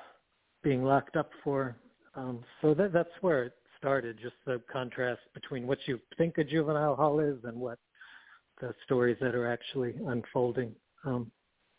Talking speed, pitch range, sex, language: 160 wpm, 125-140 Hz, male, English